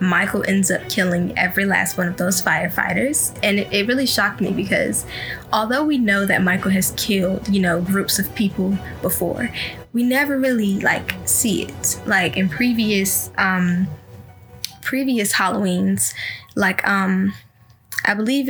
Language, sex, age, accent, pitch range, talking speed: English, female, 10-29, American, 185-215 Hz, 150 wpm